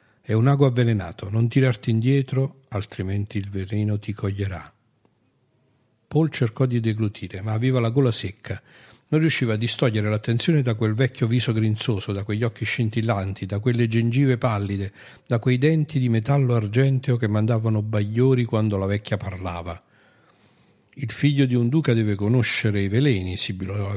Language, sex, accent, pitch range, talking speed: Italian, male, native, 100-130 Hz, 160 wpm